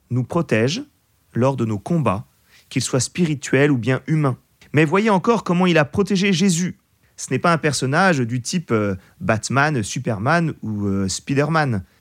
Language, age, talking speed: French, 30-49, 155 wpm